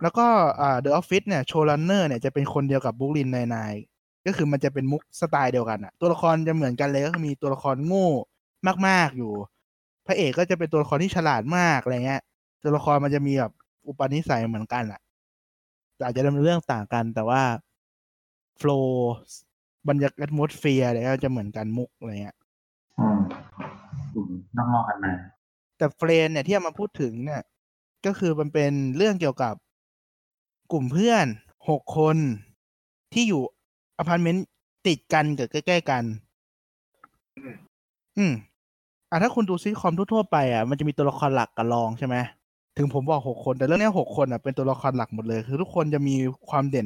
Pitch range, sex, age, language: 120-155 Hz, male, 20-39, Thai